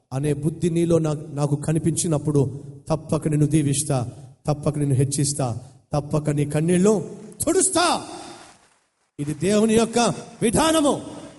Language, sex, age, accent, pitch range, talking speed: Telugu, male, 40-59, native, 145-205 Hz, 105 wpm